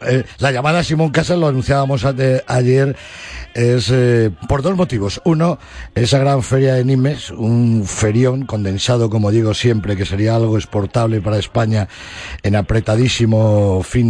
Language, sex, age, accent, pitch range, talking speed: Spanish, male, 50-69, Spanish, 105-130 Hz, 150 wpm